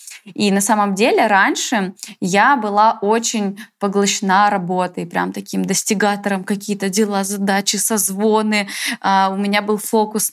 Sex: female